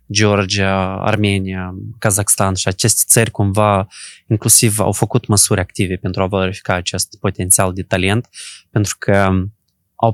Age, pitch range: 20-39, 95-115 Hz